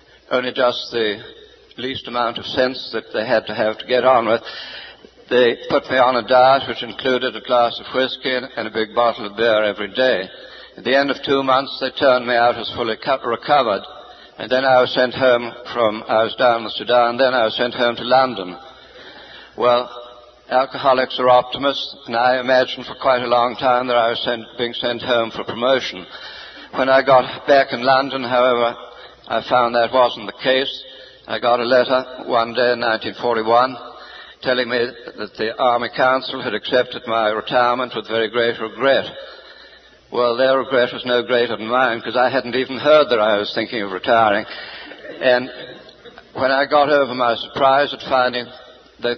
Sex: male